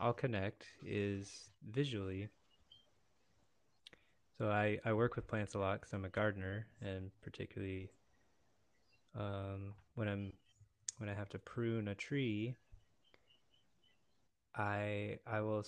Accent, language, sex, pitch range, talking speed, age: American, English, male, 100-115 Hz, 120 wpm, 20-39